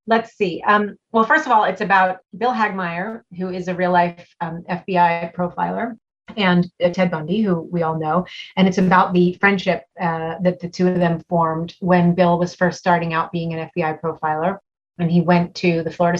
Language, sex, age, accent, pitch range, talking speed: English, female, 30-49, American, 175-195 Hz, 200 wpm